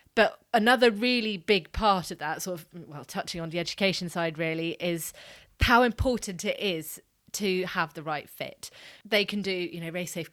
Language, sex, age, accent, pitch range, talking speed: English, female, 20-39, British, 170-200 Hz, 185 wpm